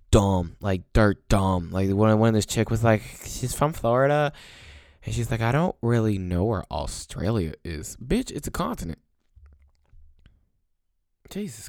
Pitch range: 85-110 Hz